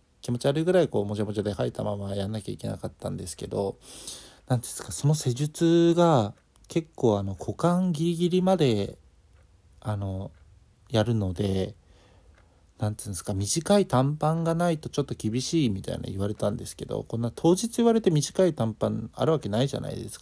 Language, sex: Japanese, male